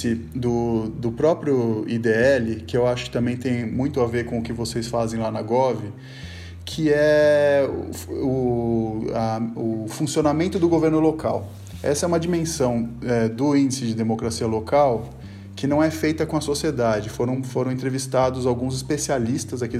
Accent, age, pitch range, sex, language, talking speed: Brazilian, 20-39, 115-150 Hz, male, Portuguese, 165 wpm